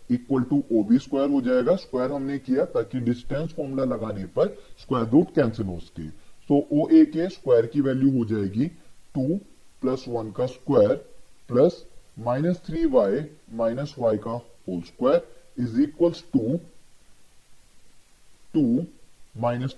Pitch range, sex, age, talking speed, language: 115-155 Hz, female, 20-39, 140 wpm, English